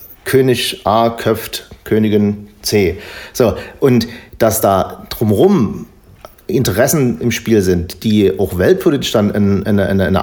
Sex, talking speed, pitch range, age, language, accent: male, 110 wpm, 100-120 Hz, 40-59, German, German